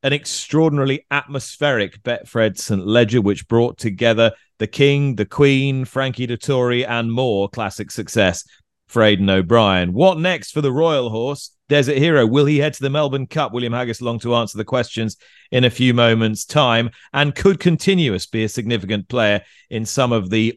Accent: British